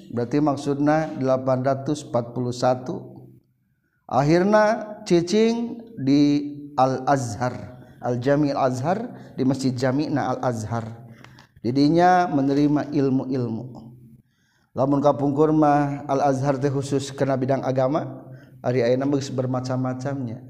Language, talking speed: Indonesian, 80 wpm